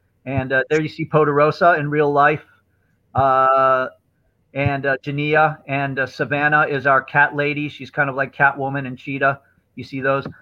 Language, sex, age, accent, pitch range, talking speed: English, male, 40-59, American, 140-165 Hz, 175 wpm